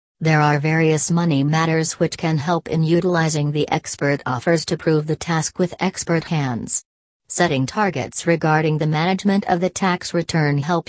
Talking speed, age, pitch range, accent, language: 165 wpm, 40-59, 150-175 Hz, American, English